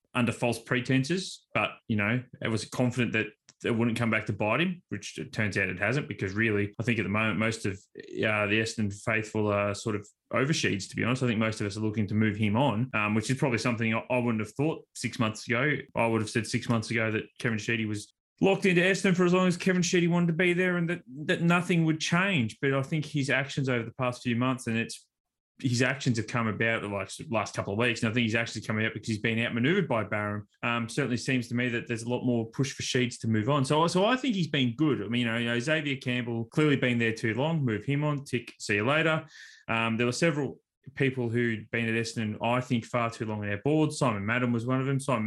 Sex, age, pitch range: male, 20-39, 110-140 Hz